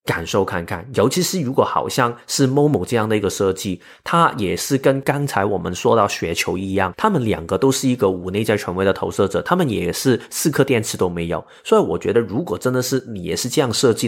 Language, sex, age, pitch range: Chinese, male, 30-49, 90-125 Hz